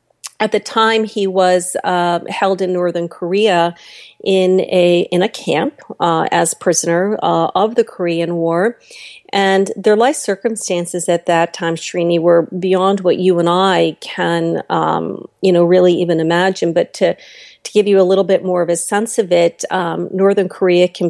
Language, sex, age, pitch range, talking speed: English, female, 40-59, 170-195 Hz, 175 wpm